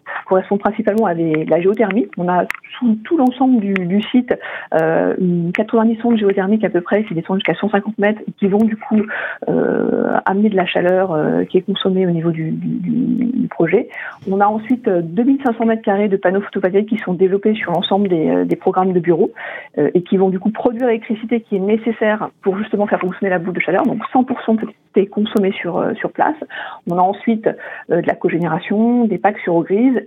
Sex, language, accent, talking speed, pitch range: female, French, French, 205 wpm, 185-230 Hz